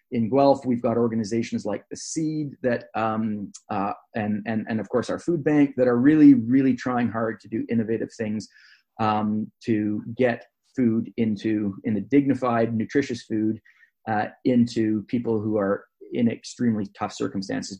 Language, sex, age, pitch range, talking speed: English, male, 30-49, 115-150 Hz, 160 wpm